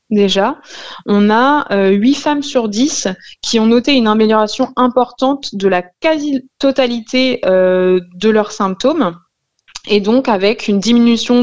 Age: 20-39